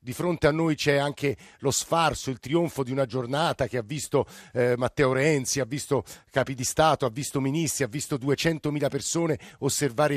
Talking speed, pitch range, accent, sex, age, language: 190 wpm, 130-150 Hz, native, male, 50-69, Italian